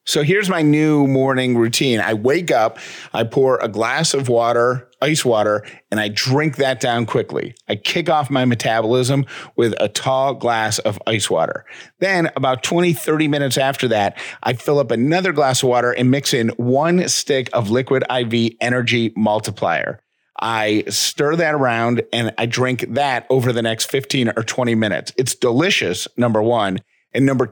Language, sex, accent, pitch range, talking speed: English, male, American, 115-145 Hz, 175 wpm